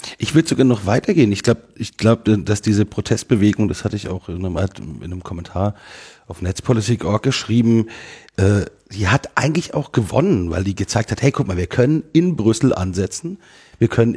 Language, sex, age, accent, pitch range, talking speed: German, male, 40-59, German, 95-125 Hz, 180 wpm